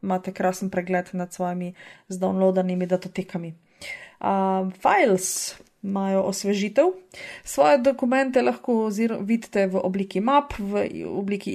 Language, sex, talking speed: English, female, 100 wpm